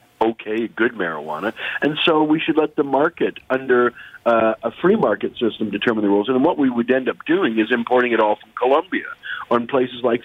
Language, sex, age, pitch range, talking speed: English, male, 40-59, 110-135 Hz, 205 wpm